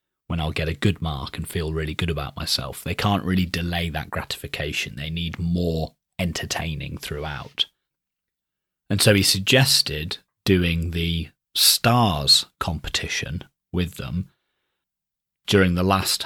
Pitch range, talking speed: 80-100 Hz, 135 wpm